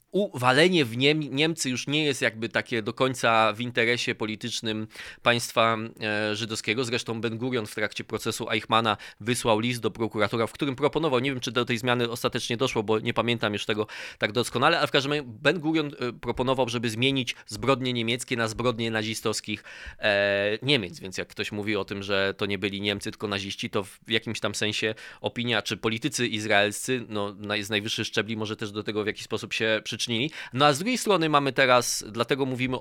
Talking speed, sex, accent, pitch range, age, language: 195 wpm, male, native, 110-135 Hz, 20-39, Polish